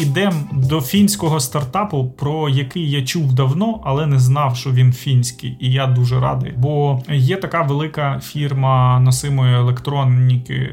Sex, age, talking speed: male, 30-49, 145 wpm